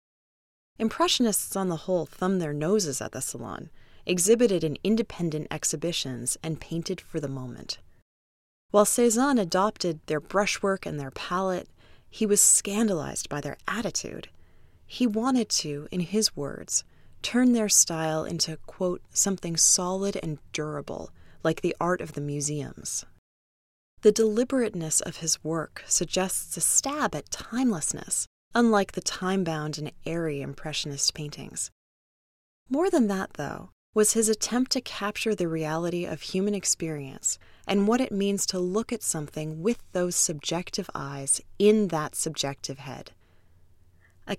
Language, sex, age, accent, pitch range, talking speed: English, female, 20-39, American, 150-210 Hz, 140 wpm